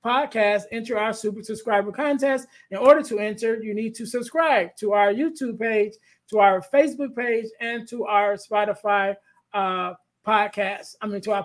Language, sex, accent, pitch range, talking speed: English, male, American, 200-235 Hz, 170 wpm